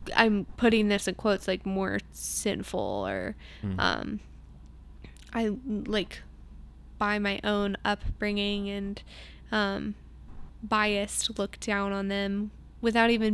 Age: 20-39